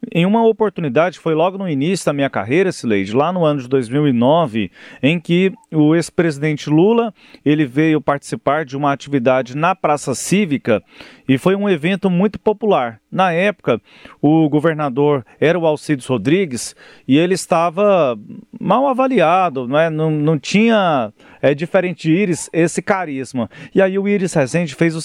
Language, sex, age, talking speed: Portuguese, male, 40-59, 155 wpm